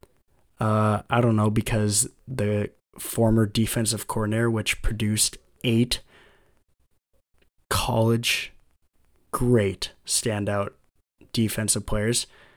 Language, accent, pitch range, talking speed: English, American, 105-120 Hz, 80 wpm